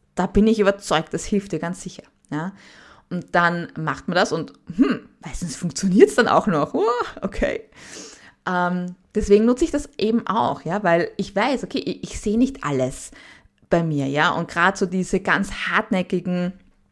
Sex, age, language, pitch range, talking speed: female, 20-39, German, 165-205 Hz, 180 wpm